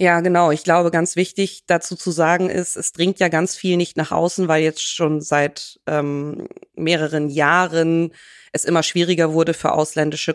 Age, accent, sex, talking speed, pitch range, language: 20-39, German, female, 180 wpm, 150-165 Hz, German